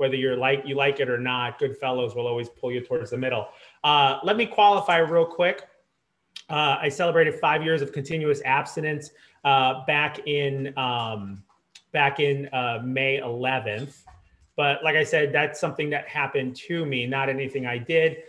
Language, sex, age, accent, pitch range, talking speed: English, male, 30-49, American, 130-150 Hz, 175 wpm